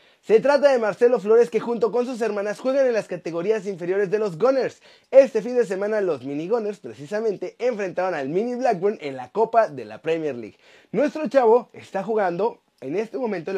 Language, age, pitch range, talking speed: Spanish, 30-49, 185-255 Hz, 200 wpm